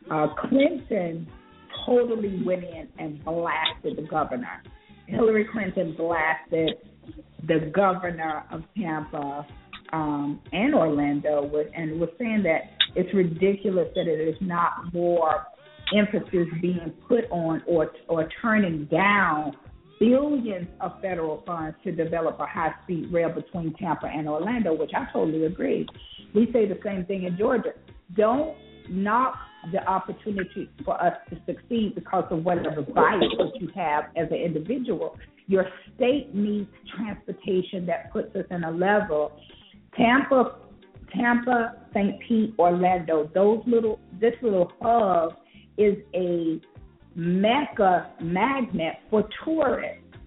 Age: 50-69